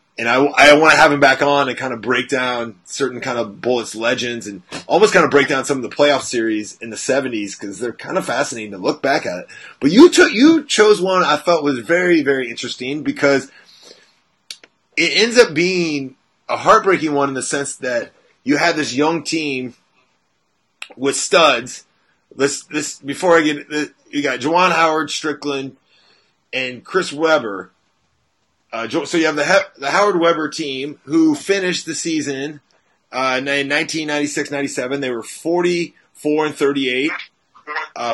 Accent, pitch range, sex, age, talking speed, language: American, 130-160 Hz, male, 30-49, 170 wpm, English